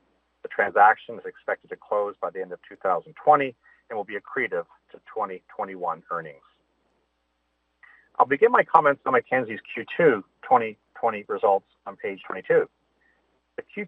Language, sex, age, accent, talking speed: English, male, 50-69, American, 130 wpm